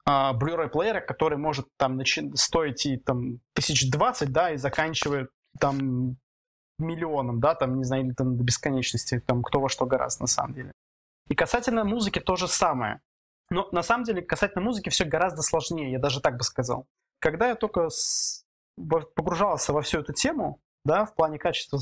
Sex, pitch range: male, 140-185 Hz